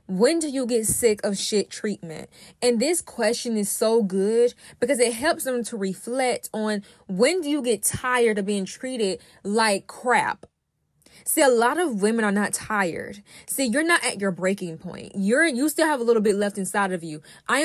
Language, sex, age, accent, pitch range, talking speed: English, female, 10-29, American, 205-270 Hz, 195 wpm